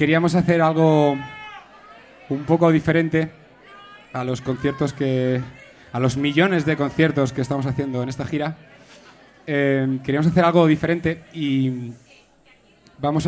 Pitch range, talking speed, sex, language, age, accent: 130-170 Hz, 125 wpm, male, Spanish, 20-39, Spanish